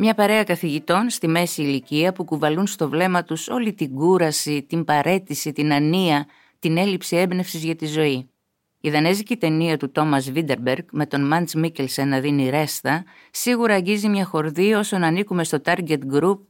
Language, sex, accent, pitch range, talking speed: Greek, female, native, 140-190 Hz, 165 wpm